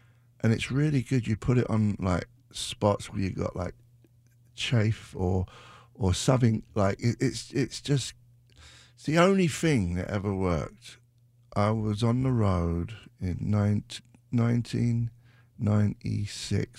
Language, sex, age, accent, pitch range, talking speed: English, male, 50-69, British, 100-120 Hz, 130 wpm